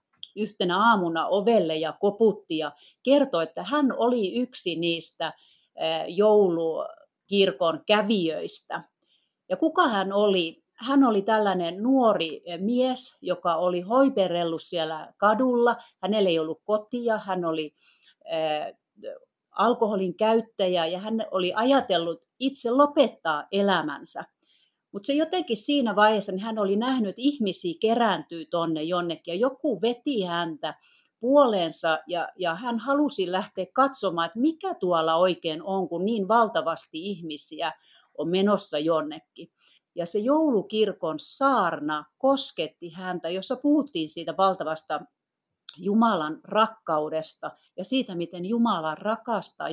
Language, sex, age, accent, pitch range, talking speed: Finnish, female, 40-59, native, 170-235 Hz, 115 wpm